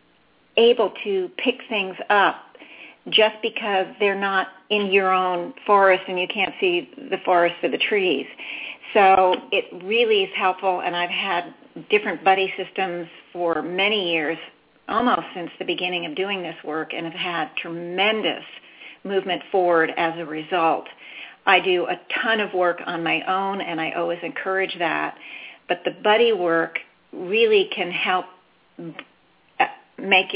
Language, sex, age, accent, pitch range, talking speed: English, female, 40-59, American, 170-205 Hz, 150 wpm